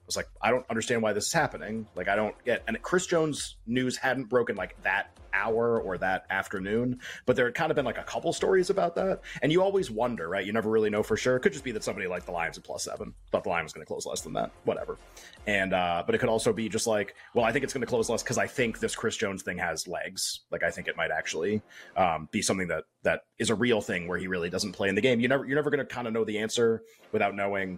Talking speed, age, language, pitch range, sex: 290 wpm, 30-49, English, 95-120 Hz, male